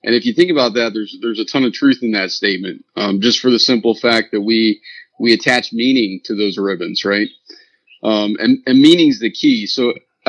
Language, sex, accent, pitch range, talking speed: English, male, American, 110-140 Hz, 220 wpm